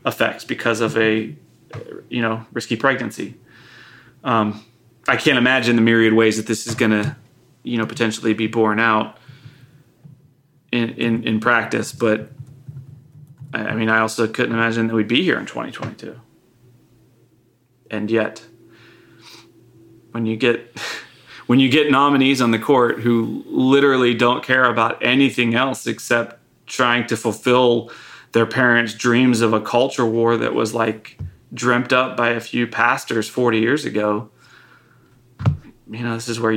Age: 30-49